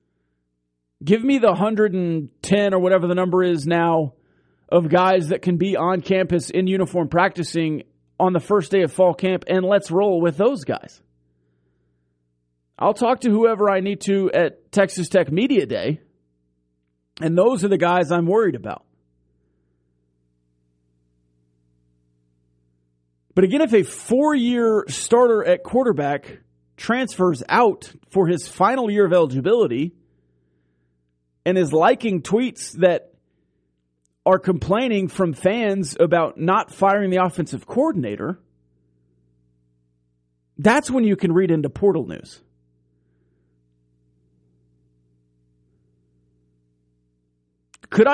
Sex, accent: male, American